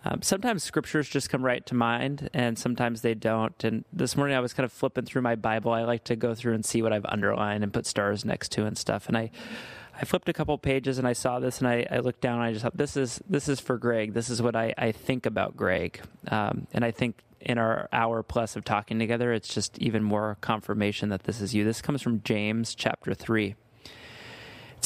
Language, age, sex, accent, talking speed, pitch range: English, 30-49, male, American, 245 wpm, 110-130 Hz